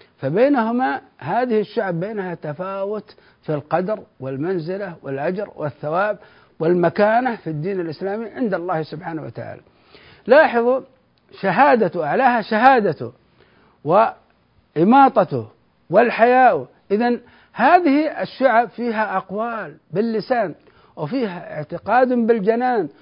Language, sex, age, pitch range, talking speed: Arabic, male, 60-79, 170-250 Hz, 85 wpm